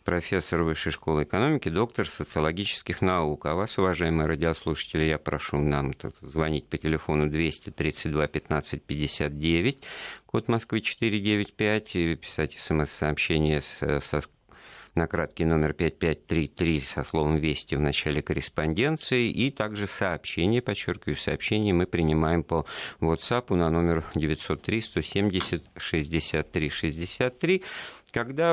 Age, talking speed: 50-69, 105 wpm